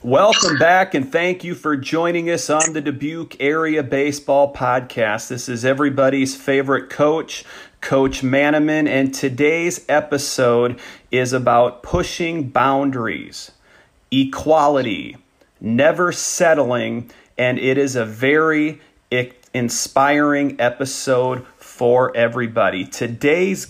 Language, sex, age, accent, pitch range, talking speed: English, male, 40-59, American, 125-155 Hz, 105 wpm